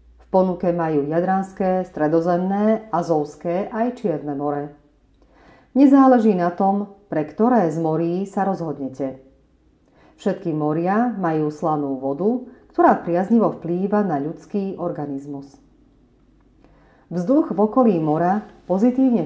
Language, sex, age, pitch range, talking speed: Slovak, female, 40-59, 155-215 Hz, 105 wpm